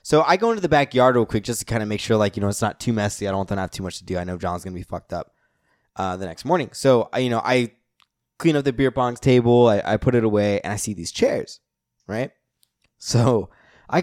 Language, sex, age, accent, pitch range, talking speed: English, male, 20-39, American, 105-140 Hz, 280 wpm